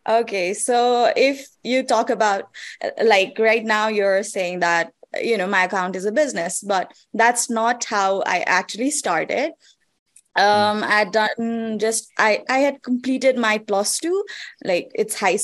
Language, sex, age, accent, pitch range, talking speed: English, female, 20-39, Indian, 200-255 Hz, 160 wpm